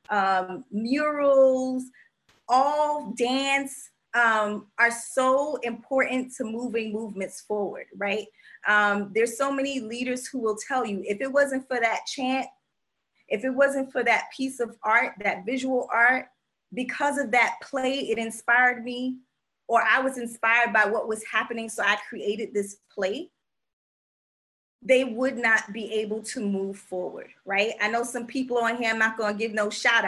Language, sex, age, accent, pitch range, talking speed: English, female, 20-39, American, 210-260 Hz, 160 wpm